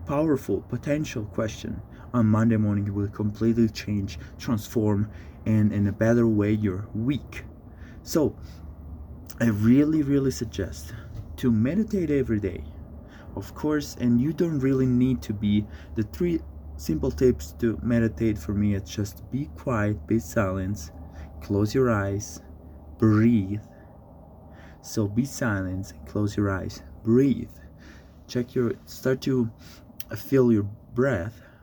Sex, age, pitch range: male, 30-49, 95-130 Hz